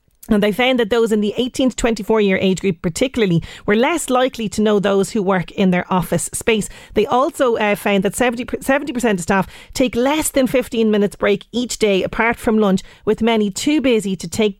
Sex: female